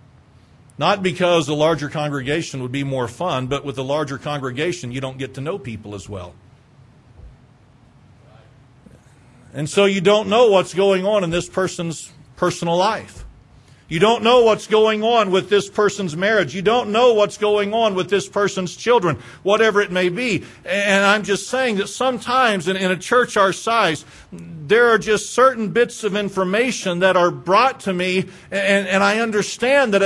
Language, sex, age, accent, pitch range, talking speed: English, male, 50-69, American, 145-200 Hz, 175 wpm